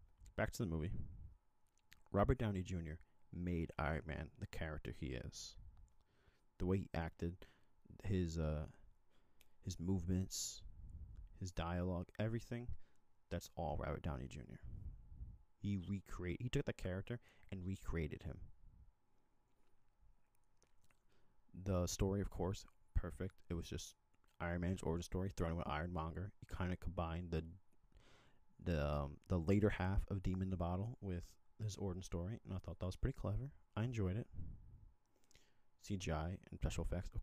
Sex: male